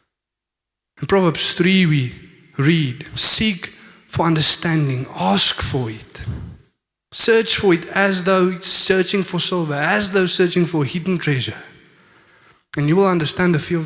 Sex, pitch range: male, 140-180 Hz